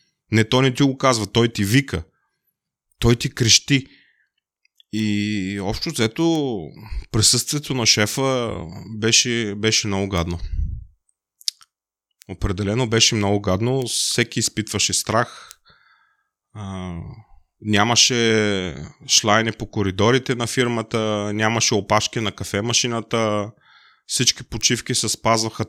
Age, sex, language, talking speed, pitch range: 30-49, male, Bulgarian, 105 wpm, 95-120 Hz